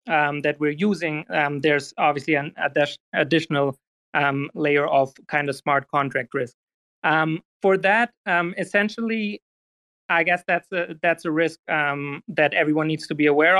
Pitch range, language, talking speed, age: 145-165 Hz, English, 155 wpm, 30-49